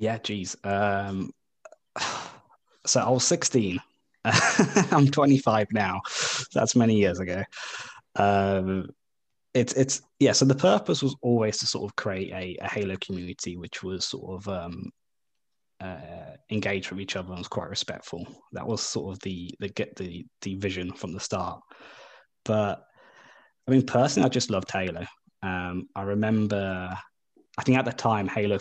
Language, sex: English, male